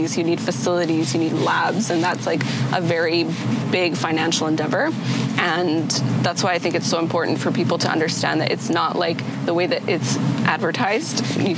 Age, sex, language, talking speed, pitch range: 20-39, female, English, 185 wpm, 170-205 Hz